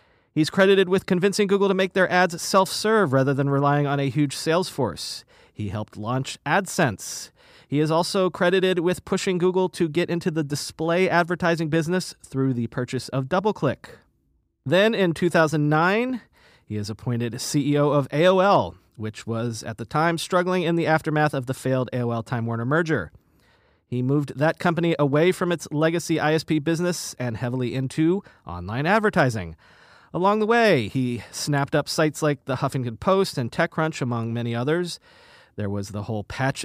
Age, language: 30-49, English